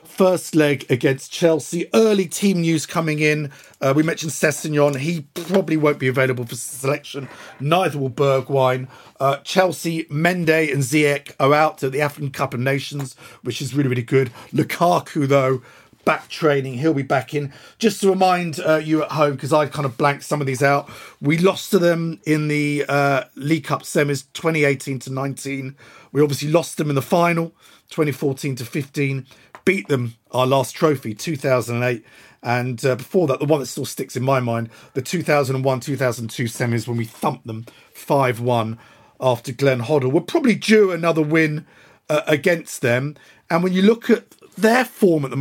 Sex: male